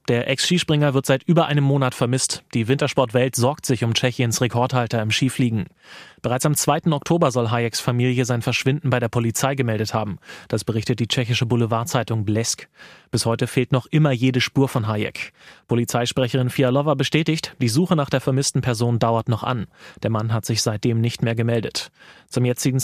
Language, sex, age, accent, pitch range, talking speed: German, male, 30-49, German, 120-140 Hz, 180 wpm